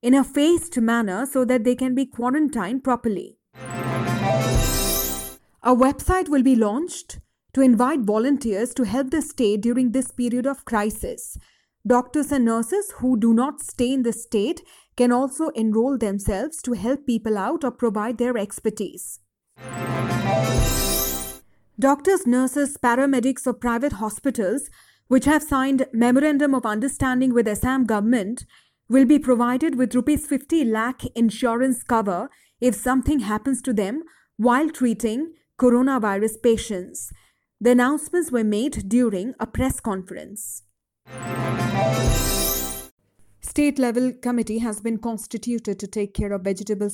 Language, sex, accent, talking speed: English, female, Indian, 130 wpm